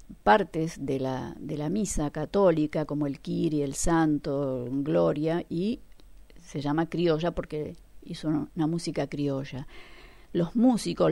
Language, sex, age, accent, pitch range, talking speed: Spanish, female, 40-59, Argentinian, 145-180 Hz, 130 wpm